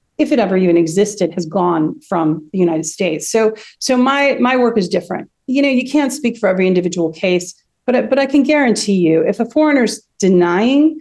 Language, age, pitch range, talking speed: English, 40-59, 180-230 Hz, 200 wpm